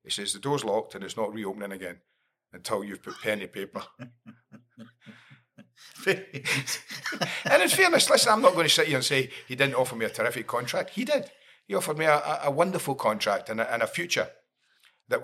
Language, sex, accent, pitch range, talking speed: English, male, British, 110-140 Hz, 195 wpm